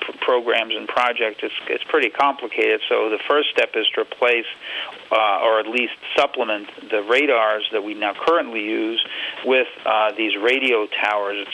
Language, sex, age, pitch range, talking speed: English, male, 50-69, 110-170 Hz, 160 wpm